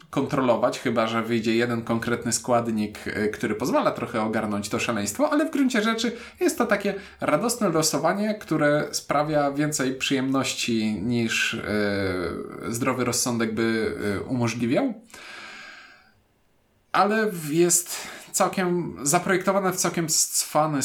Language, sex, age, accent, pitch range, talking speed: Polish, male, 20-39, native, 120-165 Hz, 110 wpm